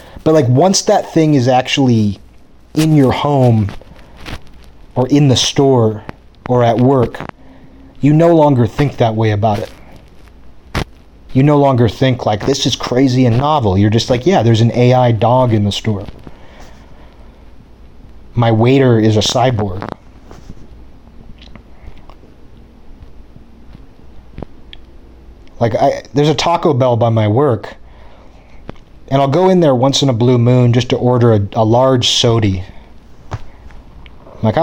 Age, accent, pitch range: 30-49, American, 100-135 Hz